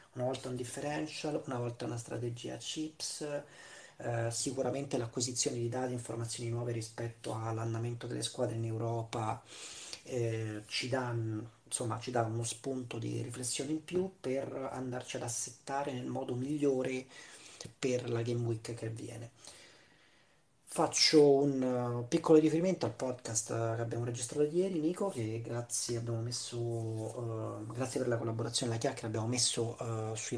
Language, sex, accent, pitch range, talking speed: Italian, male, native, 115-140 Hz, 140 wpm